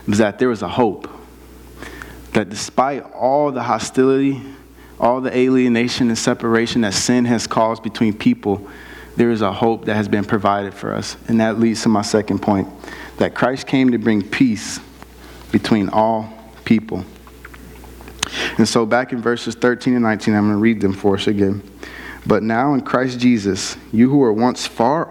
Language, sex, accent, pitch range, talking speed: English, male, American, 105-125 Hz, 175 wpm